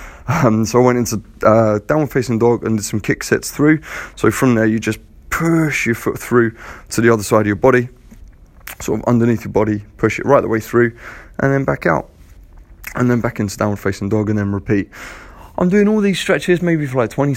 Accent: British